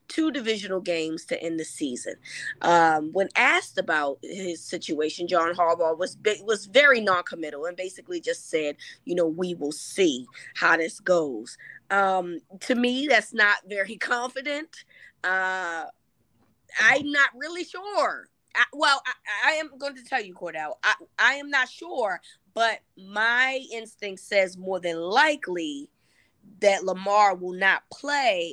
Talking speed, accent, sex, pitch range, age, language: 150 wpm, American, female, 185-260 Hz, 20-39, English